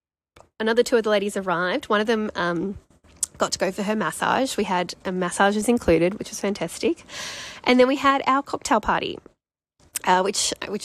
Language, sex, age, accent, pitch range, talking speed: English, female, 10-29, Australian, 175-225 Hz, 190 wpm